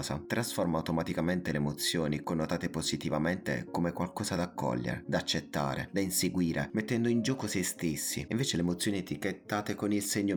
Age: 20-39